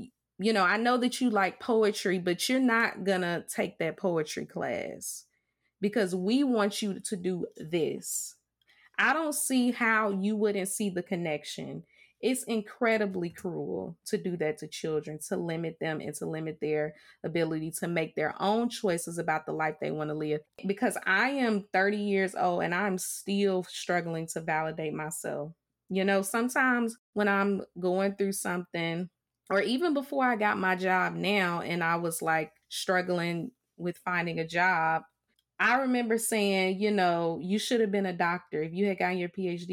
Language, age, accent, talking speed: English, 20-39, American, 175 wpm